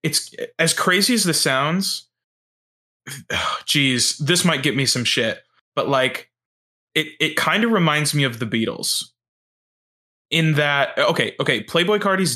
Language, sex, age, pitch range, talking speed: English, male, 20-39, 125-160 Hz, 145 wpm